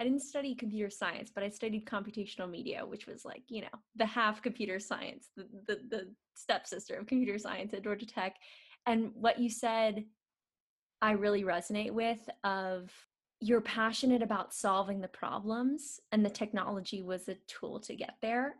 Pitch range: 200-240 Hz